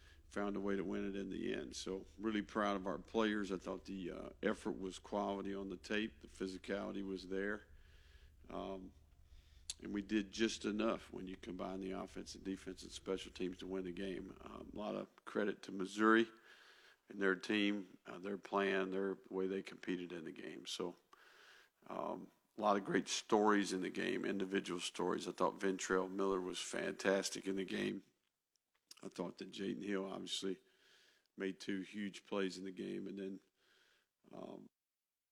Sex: male